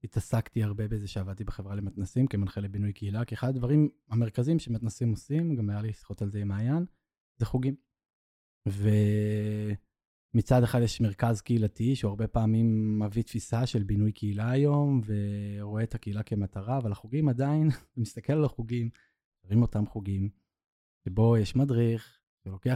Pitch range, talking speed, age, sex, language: 105-125 Hz, 145 wpm, 20-39, male, Hebrew